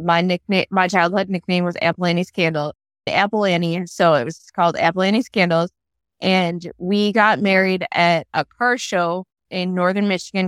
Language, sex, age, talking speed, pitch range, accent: English, female, 20-39, 150 wpm, 170-200 Hz, American